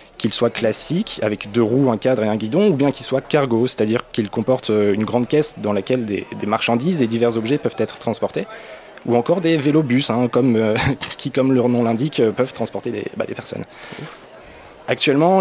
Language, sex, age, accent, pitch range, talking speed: French, male, 20-39, French, 115-135 Hz, 200 wpm